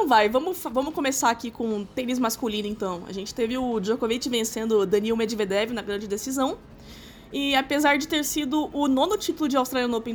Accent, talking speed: Brazilian, 185 wpm